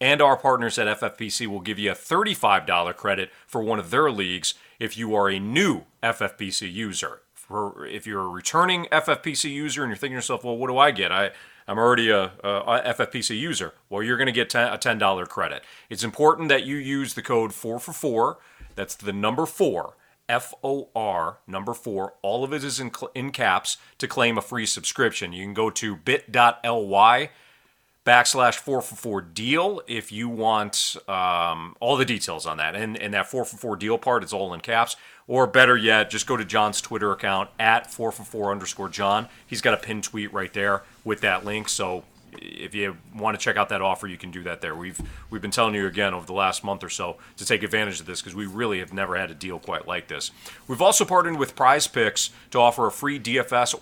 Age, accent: 40-59, American